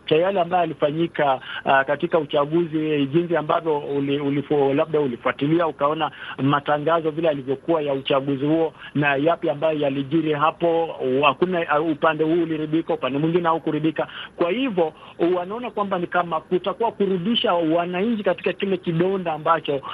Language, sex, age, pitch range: Swahili, male, 50-69, 155-195 Hz